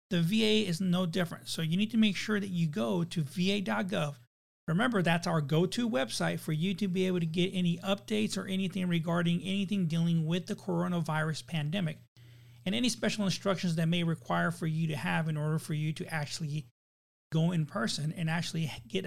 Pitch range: 155-200 Hz